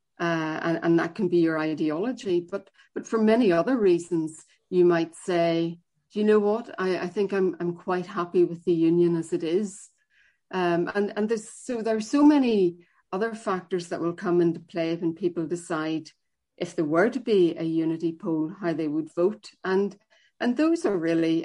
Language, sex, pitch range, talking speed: English, female, 165-205 Hz, 195 wpm